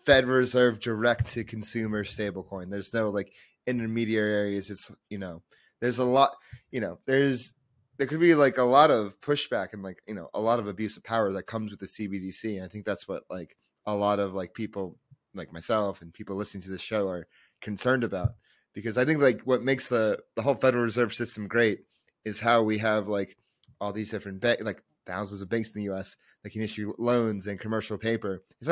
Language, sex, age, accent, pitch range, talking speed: English, male, 30-49, American, 100-125 Hz, 205 wpm